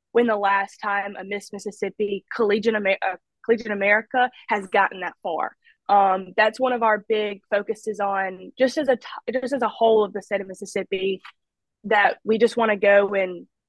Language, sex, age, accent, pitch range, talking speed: English, female, 20-39, American, 200-245 Hz, 190 wpm